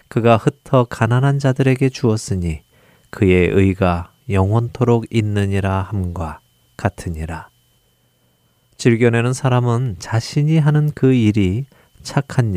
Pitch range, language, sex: 100-130 Hz, Korean, male